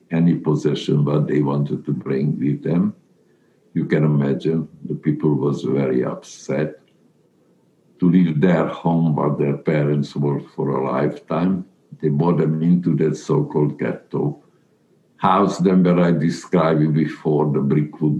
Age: 60-79